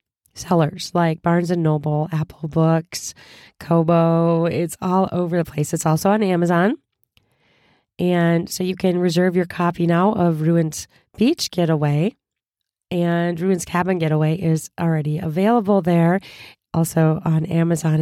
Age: 30-49